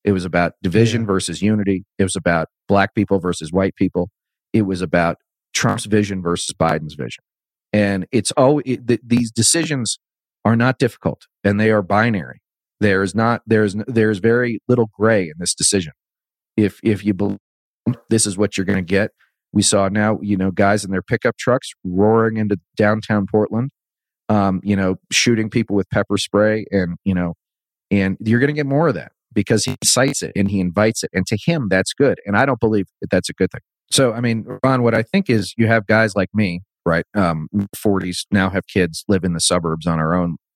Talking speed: 205 wpm